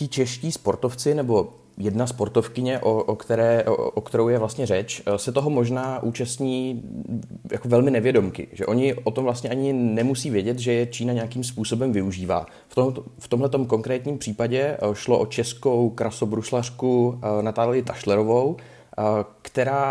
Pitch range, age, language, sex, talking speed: 105-125 Hz, 30-49, Czech, male, 145 wpm